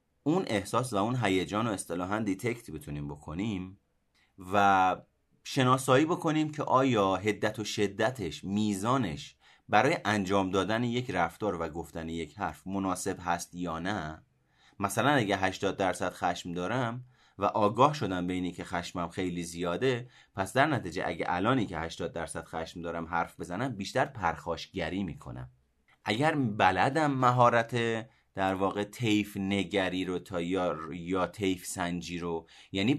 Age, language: 30-49, Persian